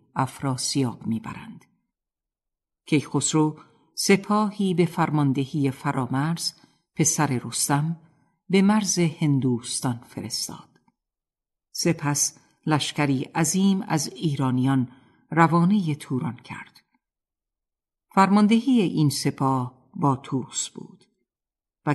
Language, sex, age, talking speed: Persian, female, 50-69, 80 wpm